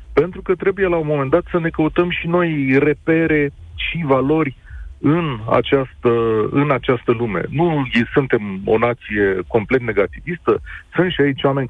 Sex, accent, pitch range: male, native, 115-165 Hz